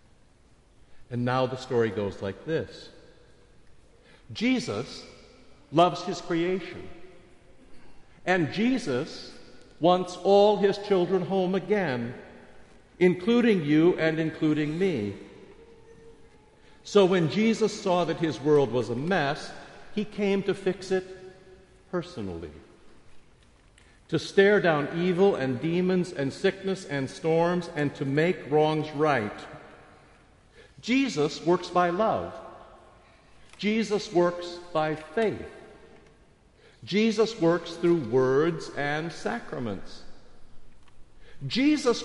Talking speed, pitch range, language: 100 wpm, 140-190 Hz, English